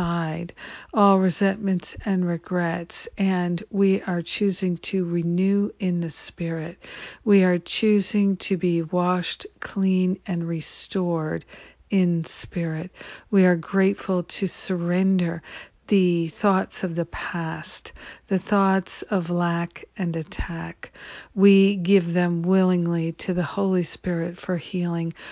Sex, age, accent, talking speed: female, 50-69, American, 120 wpm